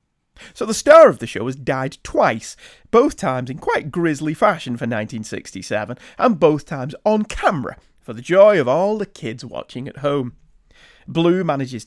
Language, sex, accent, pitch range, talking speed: English, male, British, 130-215 Hz, 170 wpm